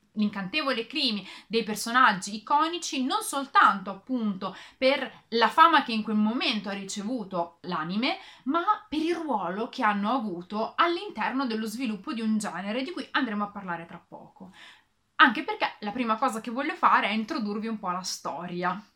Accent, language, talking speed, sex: native, Italian, 165 wpm, female